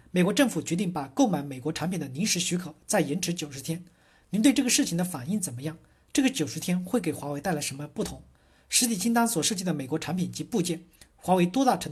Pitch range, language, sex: 150-215 Hz, Chinese, male